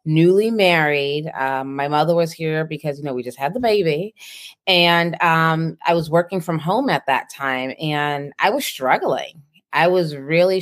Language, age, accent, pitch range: English, 30-49, American, 155-185 Hz